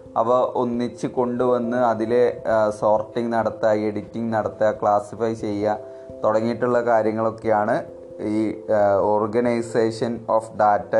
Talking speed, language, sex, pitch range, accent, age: 85 wpm, Malayalam, male, 105-120 Hz, native, 20-39